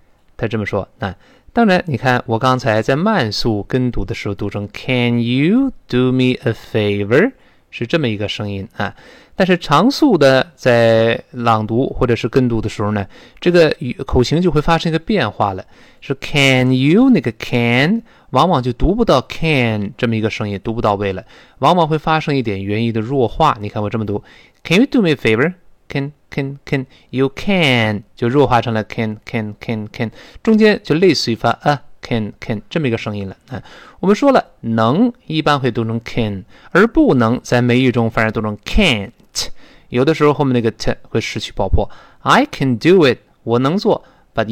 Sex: male